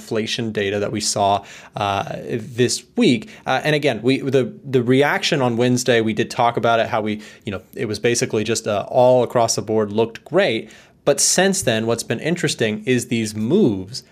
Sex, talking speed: male, 195 wpm